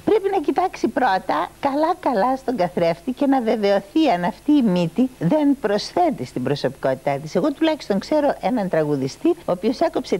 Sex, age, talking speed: female, 60-79, 160 wpm